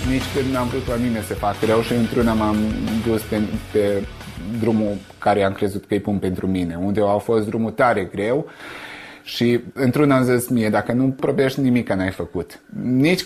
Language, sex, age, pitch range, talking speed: Romanian, male, 30-49, 105-130 Hz, 185 wpm